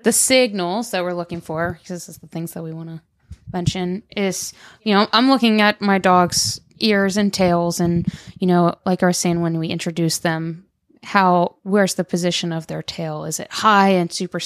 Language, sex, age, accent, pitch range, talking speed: English, female, 20-39, American, 165-200 Hz, 210 wpm